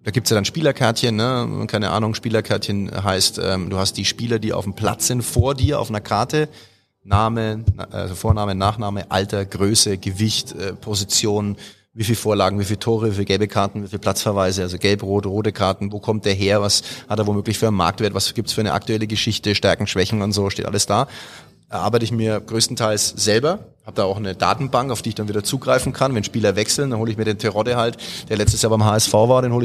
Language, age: German, 30-49